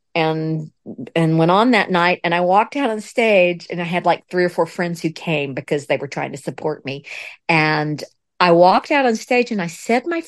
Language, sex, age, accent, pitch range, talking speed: English, female, 50-69, American, 185-265 Hz, 230 wpm